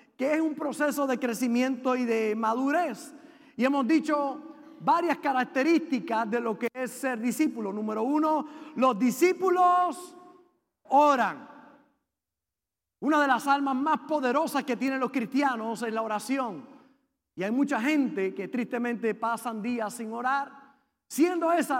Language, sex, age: Spanish, male, 40-59